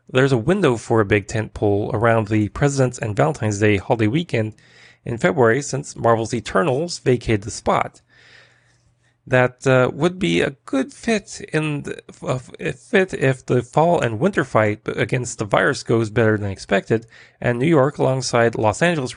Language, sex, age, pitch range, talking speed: English, male, 30-49, 110-130 Hz, 170 wpm